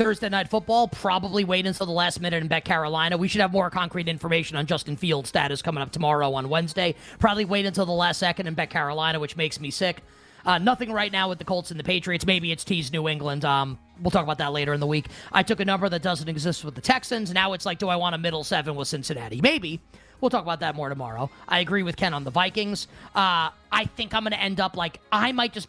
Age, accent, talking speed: 30-49, American, 260 wpm